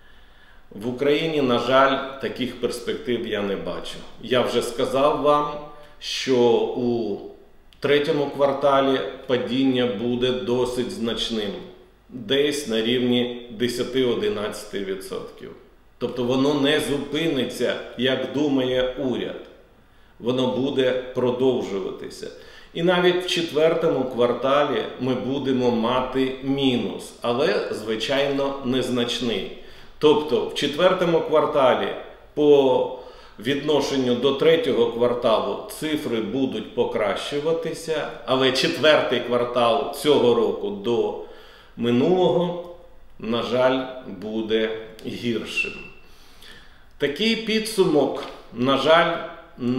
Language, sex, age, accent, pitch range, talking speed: Ukrainian, male, 40-59, native, 125-160 Hz, 90 wpm